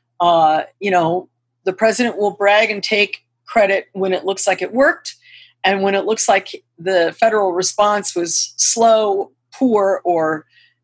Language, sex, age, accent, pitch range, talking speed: English, female, 50-69, American, 170-205 Hz, 155 wpm